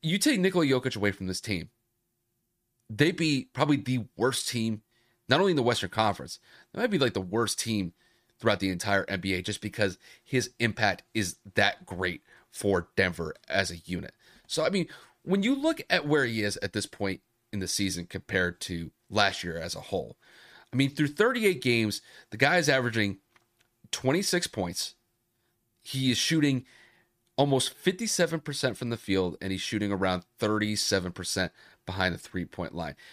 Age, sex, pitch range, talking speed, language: 30-49, male, 95-135 Hz, 170 wpm, English